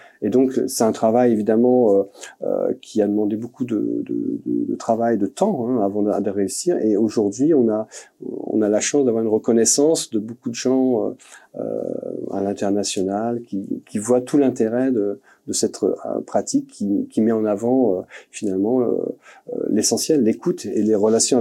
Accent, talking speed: French, 185 wpm